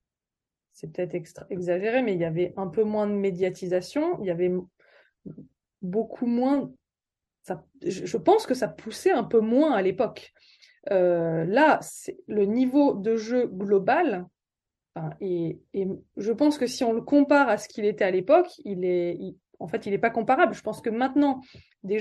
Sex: female